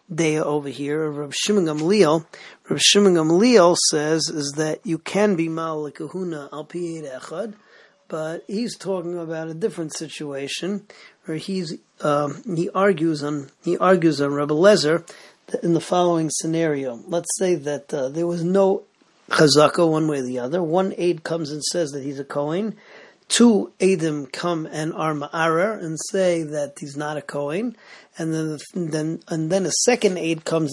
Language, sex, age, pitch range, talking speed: English, male, 40-59, 150-180 Hz, 170 wpm